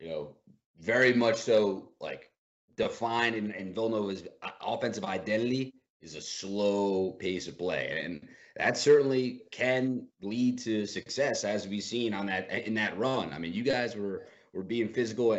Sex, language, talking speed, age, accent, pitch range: male, English, 160 wpm, 30-49, American, 105-125 Hz